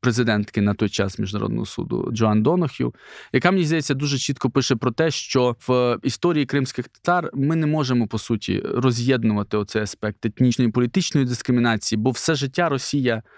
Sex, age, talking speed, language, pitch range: male, 20-39, 165 wpm, Ukrainian, 115-140 Hz